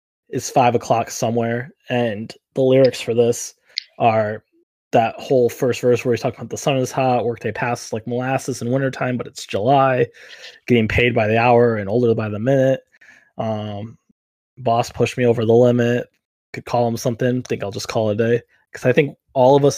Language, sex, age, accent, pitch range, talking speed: English, male, 20-39, American, 110-125 Hz, 200 wpm